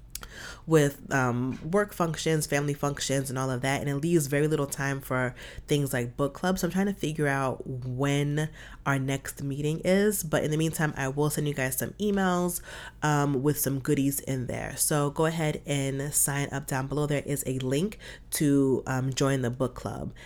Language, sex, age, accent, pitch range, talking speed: English, female, 30-49, American, 135-165 Hz, 195 wpm